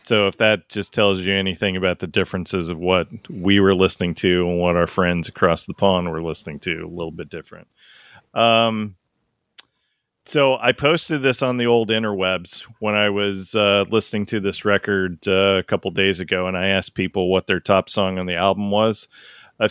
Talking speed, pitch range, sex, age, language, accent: 200 wpm, 95-115 Hz, male, 40-59, English, American